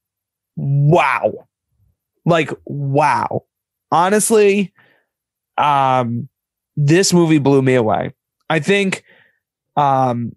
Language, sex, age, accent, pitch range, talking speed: English, male, 20-39, American, 135-185 Hz, 75 wpm